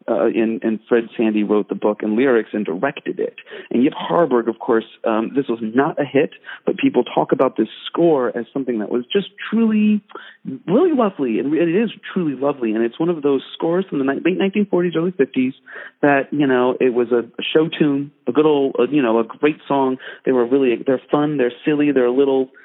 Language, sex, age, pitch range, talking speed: English, male, 40-59, 120-155 Hz, 215 wpm